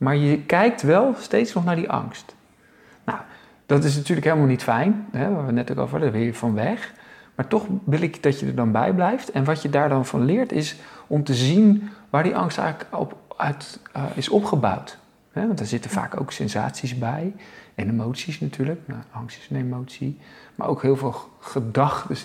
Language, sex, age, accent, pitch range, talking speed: Dutch, male, 50-69, Dutch, 130-180 Hz, 220 wpm